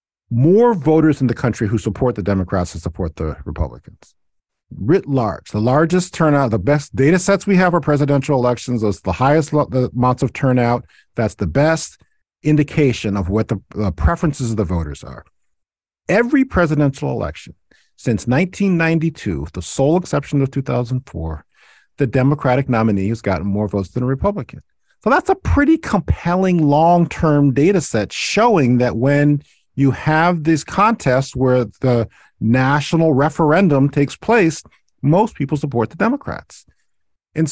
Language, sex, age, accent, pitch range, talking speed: English, male, 40-59, American, 110-160 Hz, 150 wpm